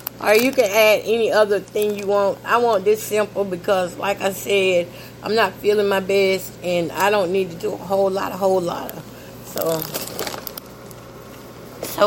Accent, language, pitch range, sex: American, English, 185-225 Hz, female